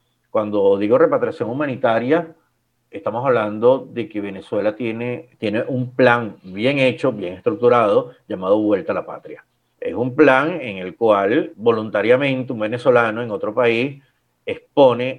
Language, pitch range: Spanish, 110-165 Hz